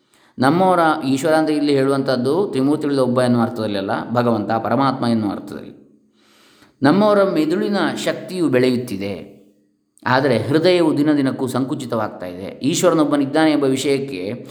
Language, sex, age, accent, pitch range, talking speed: Kannada, male, 20-39, native, 120-150 Hz, 110 wpm